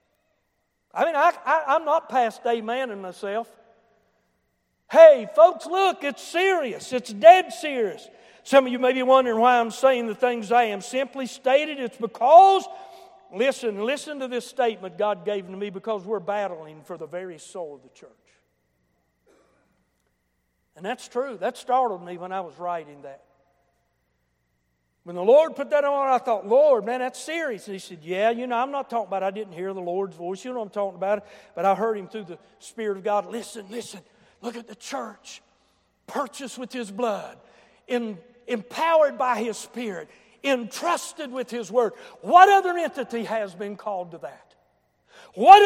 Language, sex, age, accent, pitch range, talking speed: English, male, 60-79, American, 200-280 Hz, 180 wpm